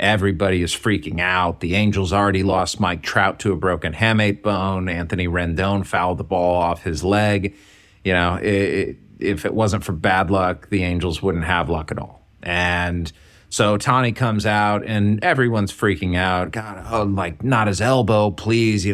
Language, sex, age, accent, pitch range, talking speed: English, male, 30-49, American, 90-110 Hz, 180 wpm